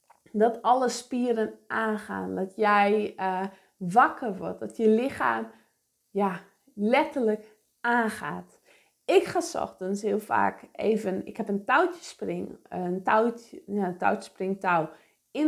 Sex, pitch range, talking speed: female, 185-265 Hz, 110 wpm